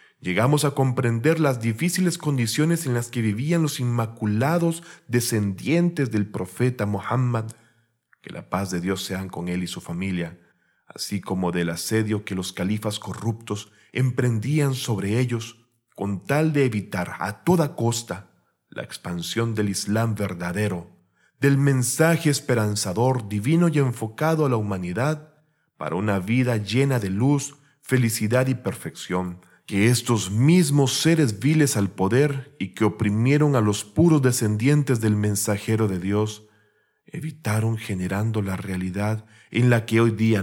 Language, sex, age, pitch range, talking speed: Spanish, male, 40-59, 105-140 Hz, 140 wpm